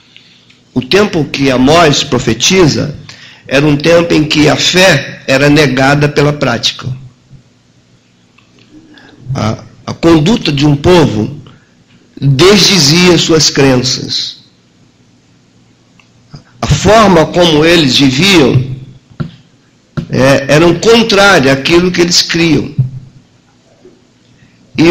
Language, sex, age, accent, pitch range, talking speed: Portuguese, male, 50-69, Brazilian, 135-165 Hz, 95 wpm